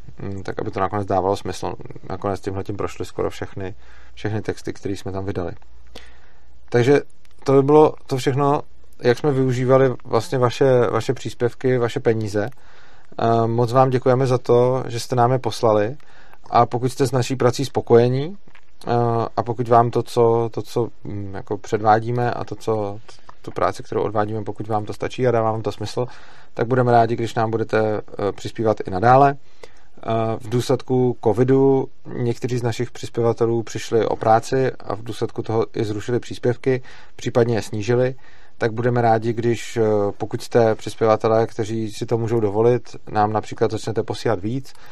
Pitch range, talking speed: 105-125 Hz, 160 wpm